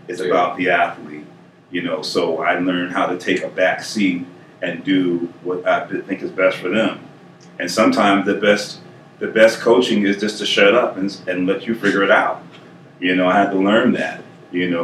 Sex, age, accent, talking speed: male, 30-49, American, 210 wpm